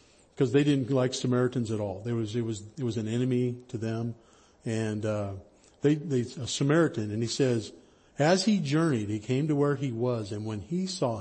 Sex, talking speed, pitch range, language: male, 210 wpm, 115-145 Hz, English